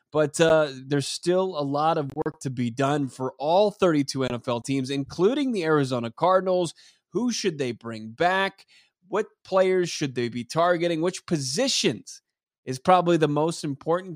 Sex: male